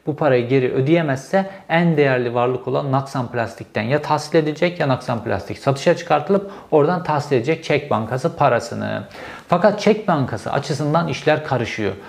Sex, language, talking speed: male, Turkish, 150 wpm